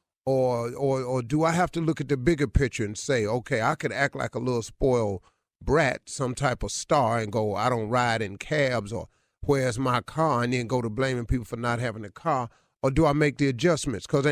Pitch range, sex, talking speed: 120-160 Hz, male, 235 wpm